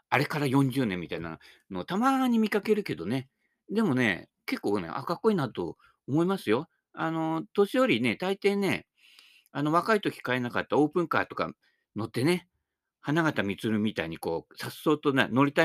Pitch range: 110-175 Hz